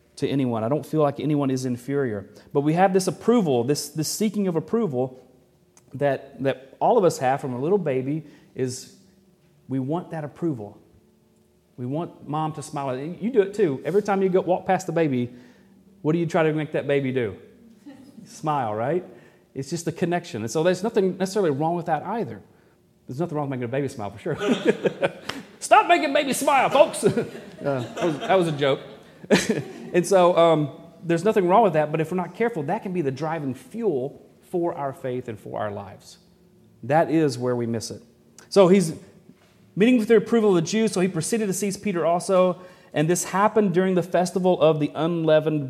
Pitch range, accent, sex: 140-190 Hz, American, male